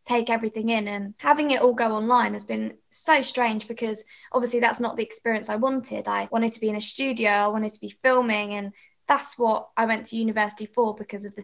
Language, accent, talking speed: English, British, 230 wpm